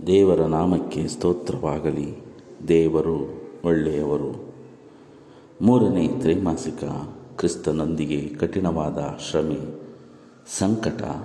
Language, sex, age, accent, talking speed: Kannada, male, 50-69, native, 60 wpm